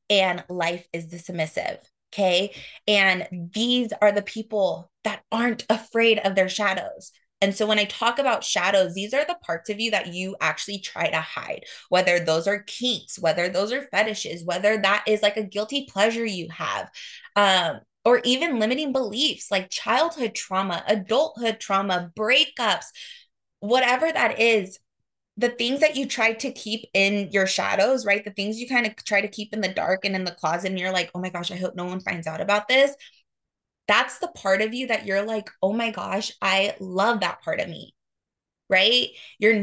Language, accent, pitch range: English, American, 190-230 Hz